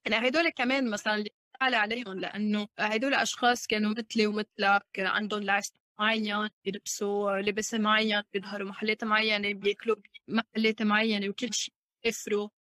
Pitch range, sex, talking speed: 205-240 Hz, female, 135 wpm